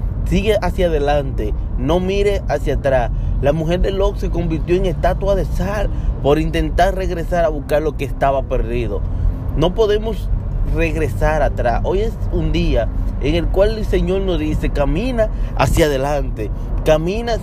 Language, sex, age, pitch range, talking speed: Spanish, male, 30-49, 110-160 Hz, 155 wpm